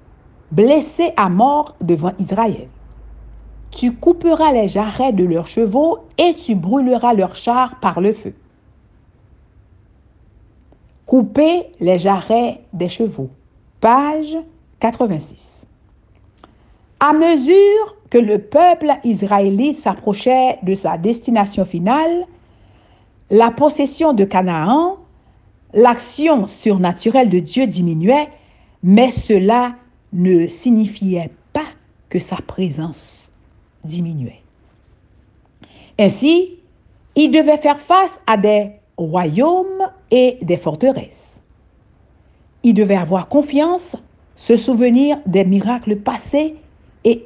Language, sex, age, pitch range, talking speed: French, female, 60-79, 185-285 Hz, 100 wpm